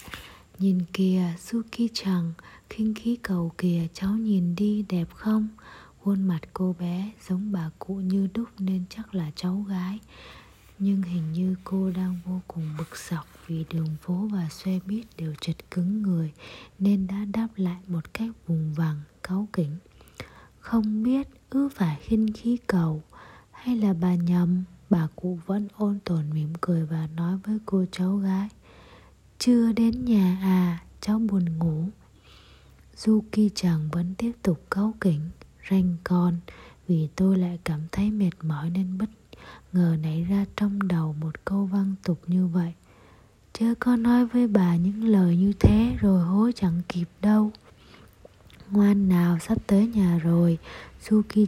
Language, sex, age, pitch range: Japanese, female, 20-39, 170-210 Hz